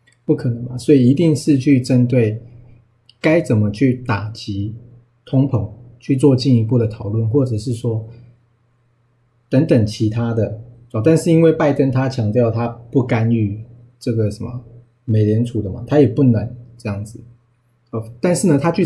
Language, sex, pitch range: Chinese, male, 115-125 Hz